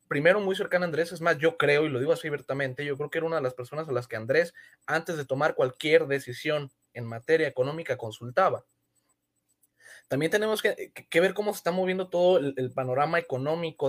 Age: 20-39